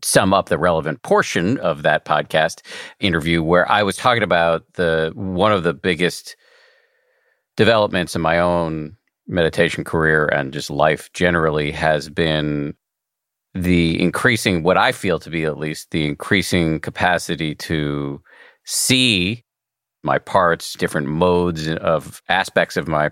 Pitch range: 80-90 Hz